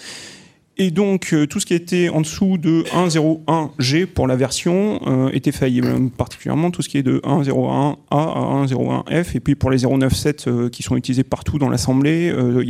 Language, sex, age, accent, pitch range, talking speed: French, male, 30-49, French, 130-160 Hz, 175 wpm